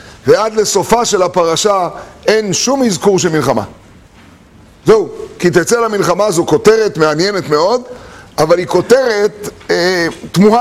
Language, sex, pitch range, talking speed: Hebrew, male, 175-220 Hz, 125 wpm